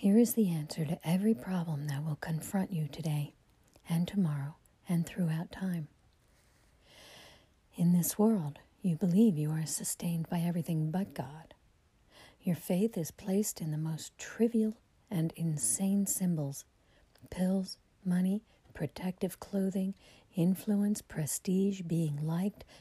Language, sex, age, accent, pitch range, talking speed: English, female, 50-69, American, 160-190 Hz, 125 wpm